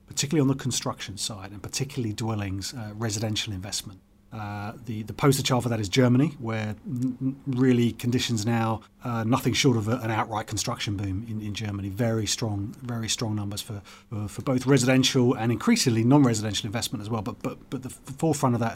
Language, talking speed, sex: English, 190 wpm, male